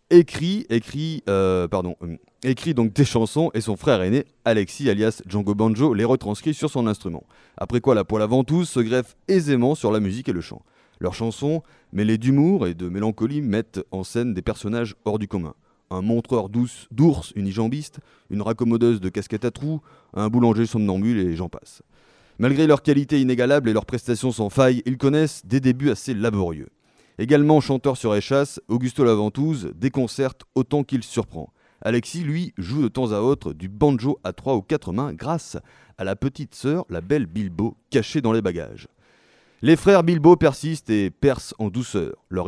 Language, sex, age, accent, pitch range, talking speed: French, male, 30-49, French, 105-140 Hz, 185 wpm